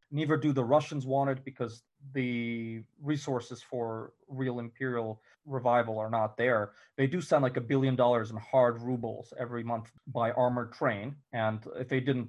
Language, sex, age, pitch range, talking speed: English, male, 30-49, 115-135 Hz, 170 wpm